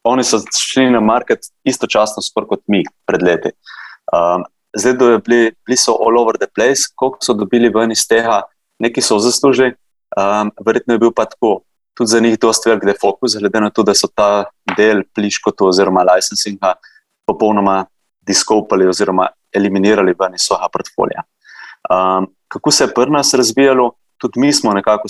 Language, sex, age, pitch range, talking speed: English, male, 20-39, 100-115 Hz, 175 wpm